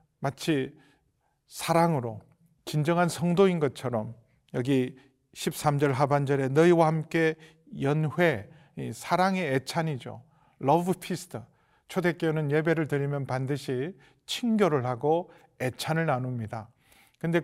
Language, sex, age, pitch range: Korean, male, 40-59, 140-180 Hz